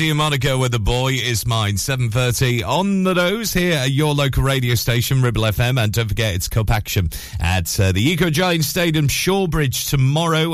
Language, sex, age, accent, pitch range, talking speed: English, male, 40-59, British, 95-130 Hz, 175 wpm